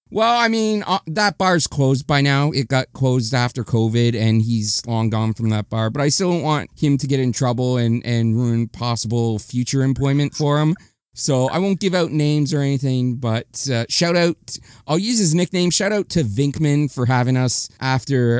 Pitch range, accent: 125-175 Hz, American